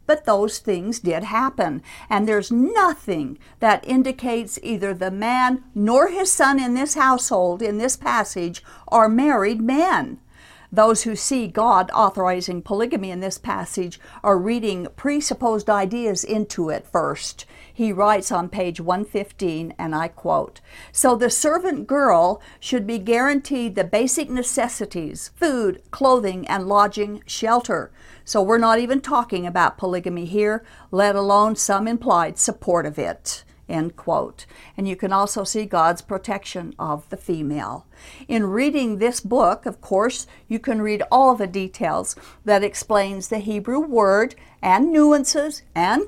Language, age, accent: English, 60-79, American